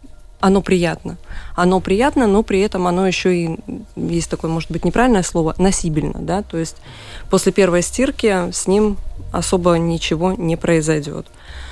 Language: Russian